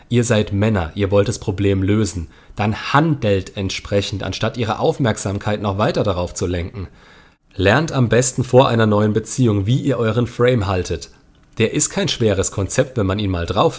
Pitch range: 100-125 Hz